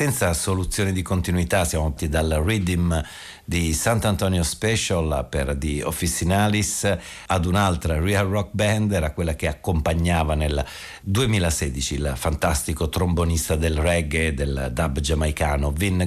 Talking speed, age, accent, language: 125 wpm, 50-69, native, Italian